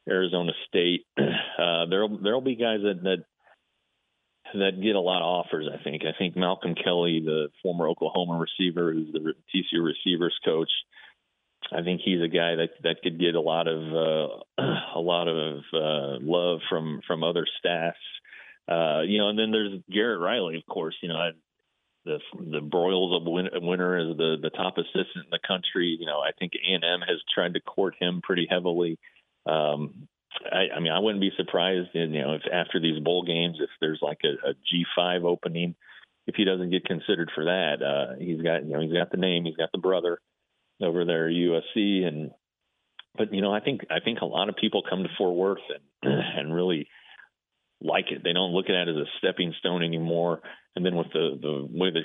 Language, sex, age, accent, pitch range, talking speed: English, male, 40-59, American, 80-90 Hz, 205 wpm